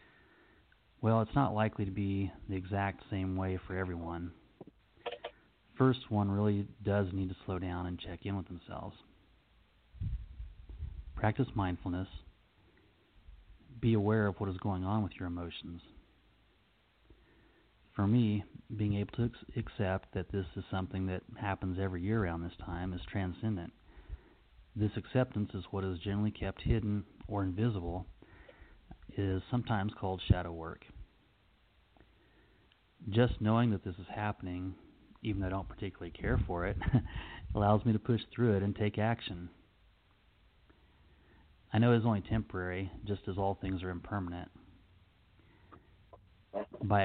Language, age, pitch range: English, 30-49, 90-105 Hz